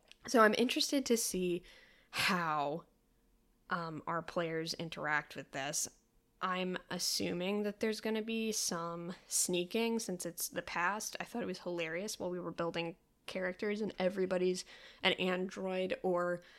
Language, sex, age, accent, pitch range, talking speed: English, female, 10-29, American, 175-220 Hz, 145 wpm